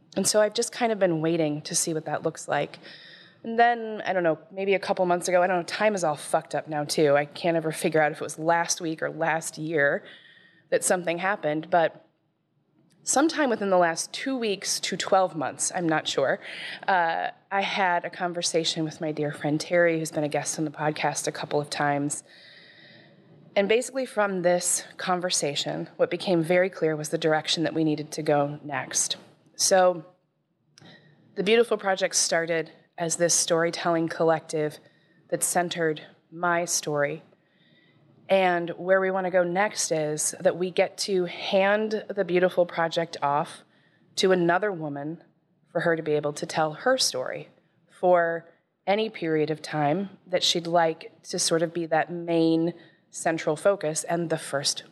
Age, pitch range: 20-39, 155-185 Hz